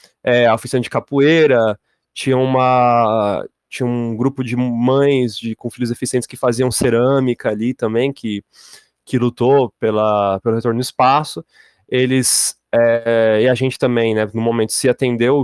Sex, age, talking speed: male, 20-39, 130 wpm